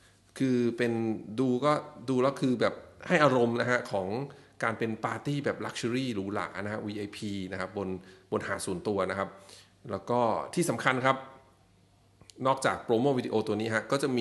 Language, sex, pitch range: English, male, 100-125 Hz